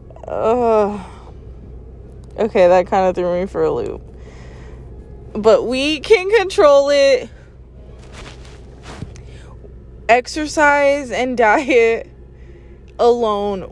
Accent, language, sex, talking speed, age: American, English, female, 85 wpm, 20-39